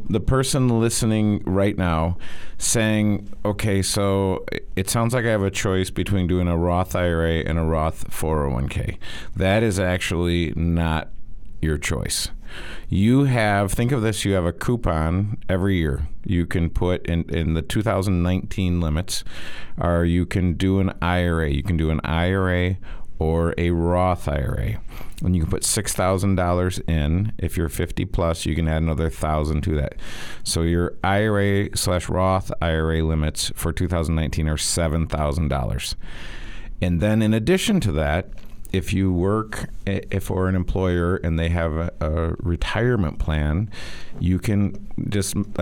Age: 50-69